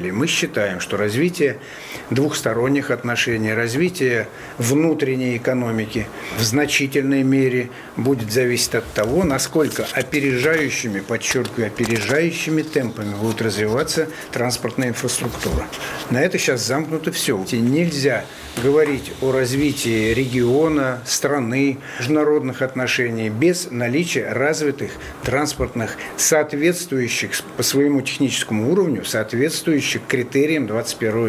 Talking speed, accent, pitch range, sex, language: 100 wpm, native, 115-145 Hz, male, Russian